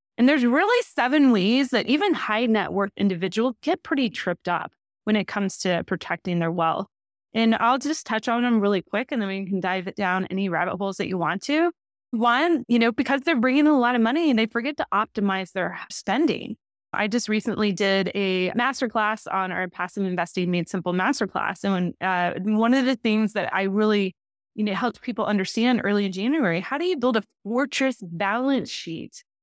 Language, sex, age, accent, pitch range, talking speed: English, female, 20-39, American, 190-255 Hz, 205 wpm